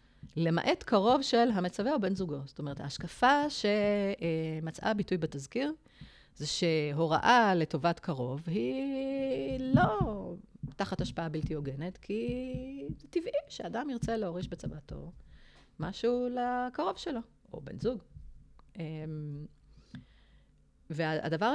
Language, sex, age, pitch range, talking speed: Hebrew, female, 30-49, 150-220 Hz, 105 wpm